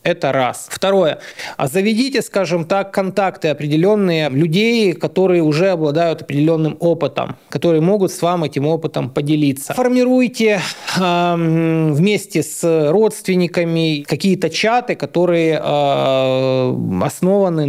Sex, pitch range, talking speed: male, 150-190 Hz, 110 wpm